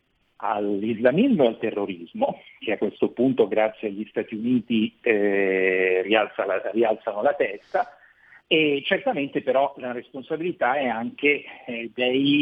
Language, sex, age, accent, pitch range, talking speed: Italian, male, 50-69, native, 115-145 Hz, 120 wpm